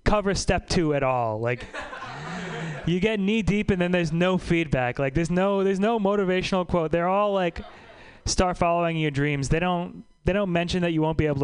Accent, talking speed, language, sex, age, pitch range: American, 205 wpm, English, male, 30-49, 130-175 Hz